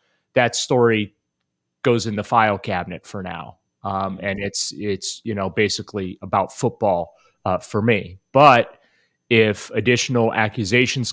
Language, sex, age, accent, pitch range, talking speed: English, male, 30-49, American, 100-115 Hz, 135 wpm